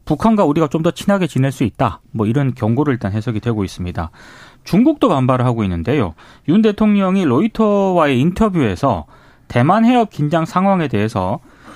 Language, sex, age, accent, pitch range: Korean, male, 30-49, native, 120-185 Hz